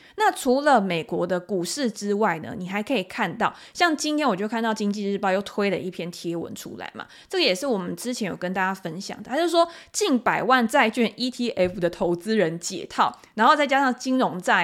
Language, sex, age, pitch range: Chinese, female, 20-39, 195-280 Hz